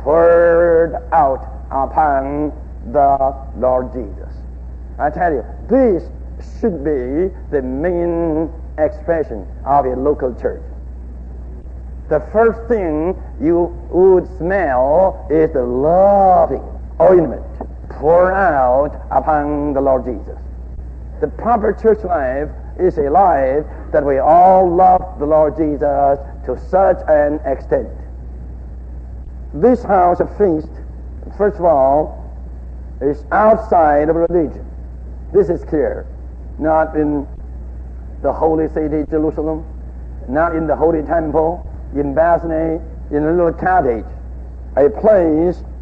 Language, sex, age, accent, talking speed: English, male, 60-79, American, 115 wpm